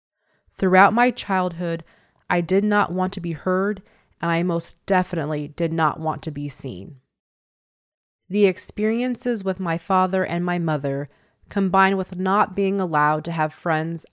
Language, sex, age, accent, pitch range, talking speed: English, female, 20-39, American, 155-190 Hz, 155 wpm